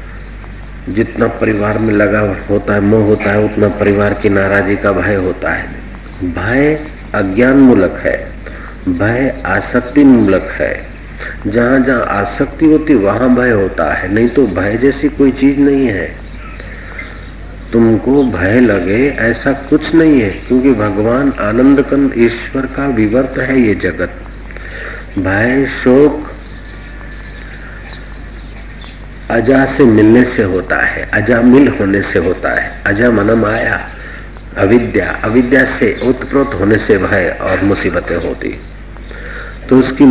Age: 50-69